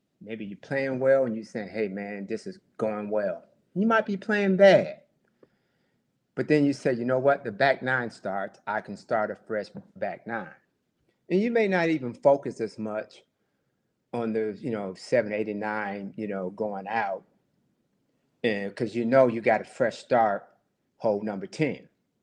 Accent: American